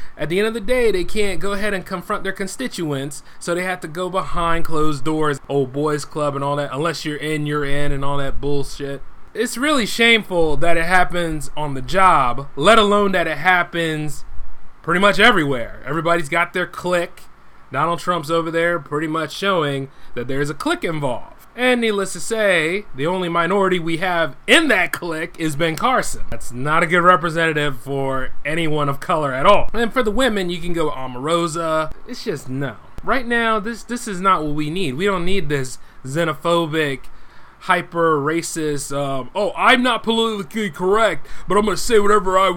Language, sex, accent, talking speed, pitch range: English, male, American, 190 wpm, 150-200 Hz